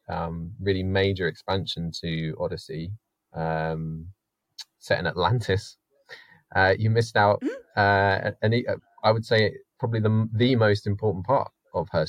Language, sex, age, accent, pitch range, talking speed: English, male, 20-39, British, 90-110 Hz, 140 wpm